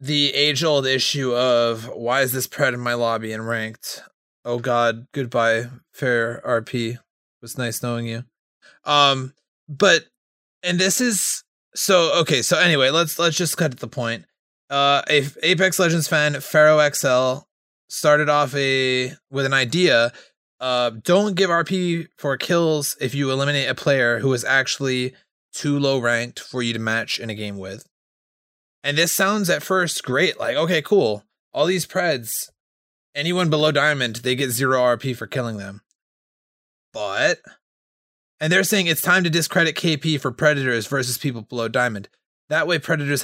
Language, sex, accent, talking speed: English, male, American, 160 wpm